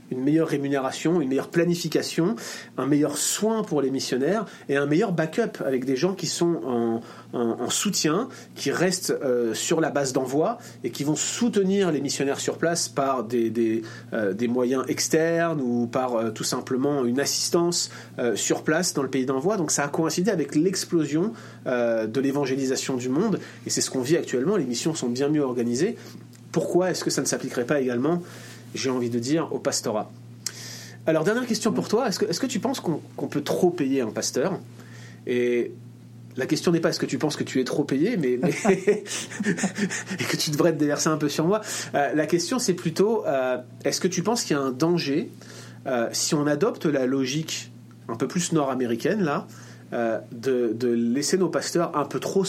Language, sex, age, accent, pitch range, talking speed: French, male, 30-49, French, 125-170 Hz, 200 wpm